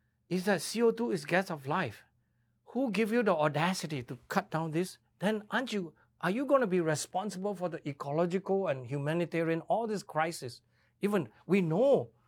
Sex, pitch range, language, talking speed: male, 145-210 Hz, English, 175 wpm